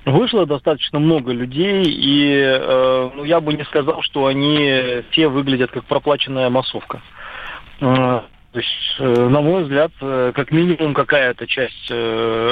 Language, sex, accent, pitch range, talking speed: Russian, male, native, 125-145 Hz, 140 wpm